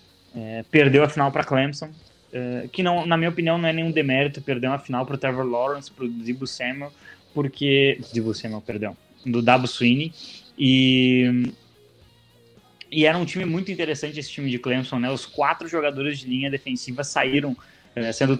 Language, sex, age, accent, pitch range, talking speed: English, male, 20-39, Brazilian, 125-150 Hz, 175 wpm